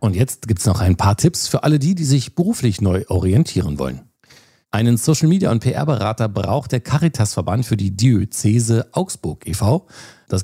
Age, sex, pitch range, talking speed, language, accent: 50-69, male, 95-130 Hz, 170 wpm, German, German